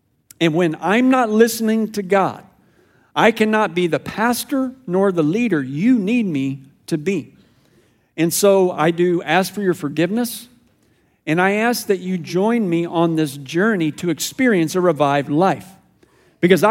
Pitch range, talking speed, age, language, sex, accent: 165-225 Hz, 160 wpm, 50-69, English, male, American